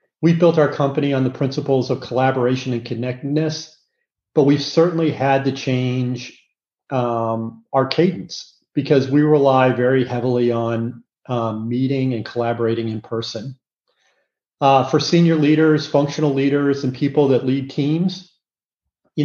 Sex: male